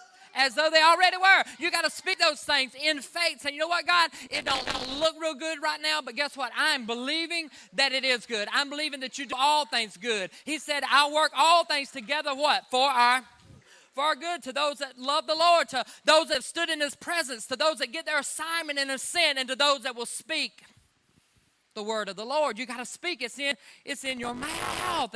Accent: American